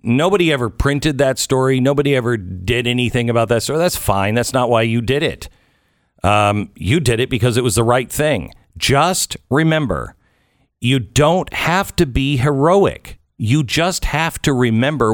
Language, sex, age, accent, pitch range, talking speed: English, male, 50-69, American, 105-145 Hz, 170 wpm